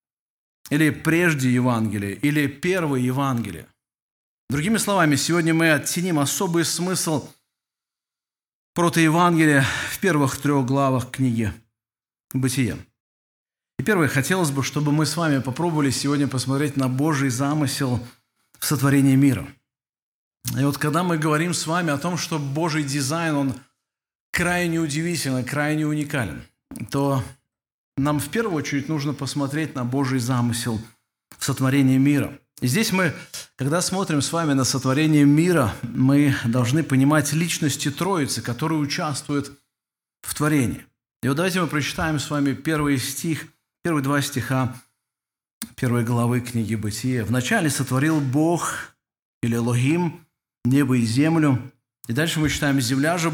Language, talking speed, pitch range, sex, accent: Russian, 130 wpm, 130-155 Hz, male, native